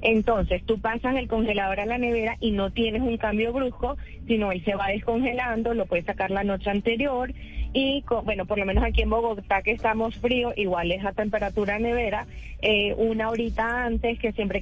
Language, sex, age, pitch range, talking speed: Spanish, female, 20-39, 200-245 Hz, 195 wpm